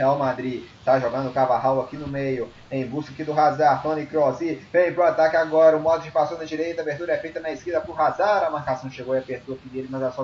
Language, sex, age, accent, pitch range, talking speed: Portuguese, male, 20-39, Brazilian, 125-145 Hz, 260 wpm